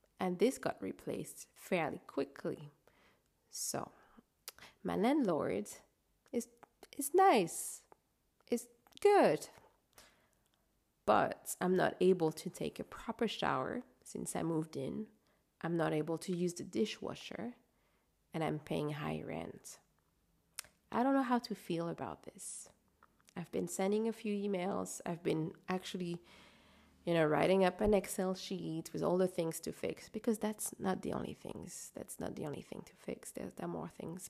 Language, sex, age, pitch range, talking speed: English, female, 30-49, 170-225 Hz, 150 wpm